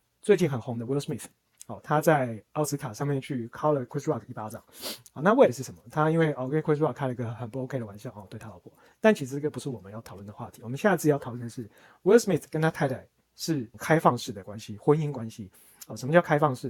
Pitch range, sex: 120-150 Hz, male